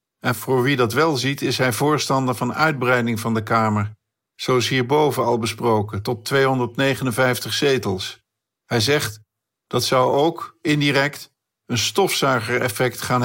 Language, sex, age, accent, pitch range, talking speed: Dutch, male, 50-69, Dutch, 115-135 Hz, 135 wpm